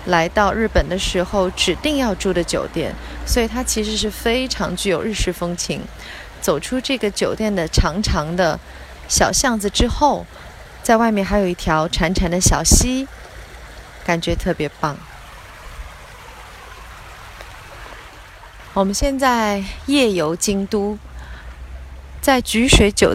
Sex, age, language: female, 30-49, Chinese